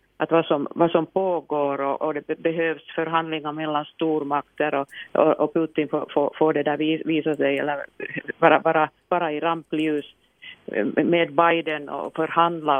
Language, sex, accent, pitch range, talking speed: Swedish, female, Finnish, 145-165 Hz, 160 wpm